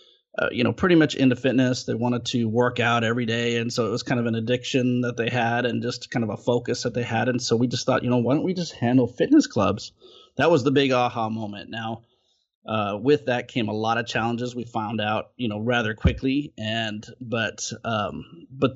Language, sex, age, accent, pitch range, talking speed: English, male, 30-49, American, 110-125 Hz, 235 wpm